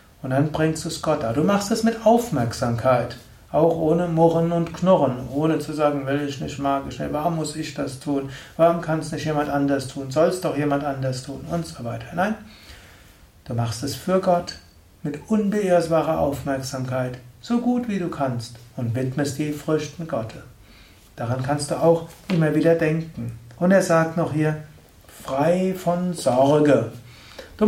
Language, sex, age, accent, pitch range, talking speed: German, male, 60-79, German, 130-170 Hz, 180 wpm